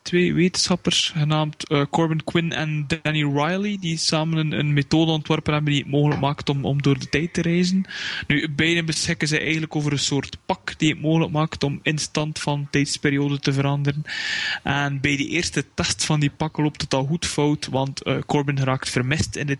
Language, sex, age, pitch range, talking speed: English, male, 20-39, 135-155 Hz, 200 wpm